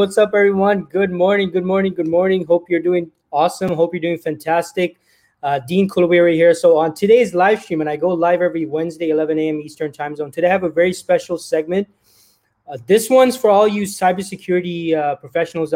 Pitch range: 160-185 Hz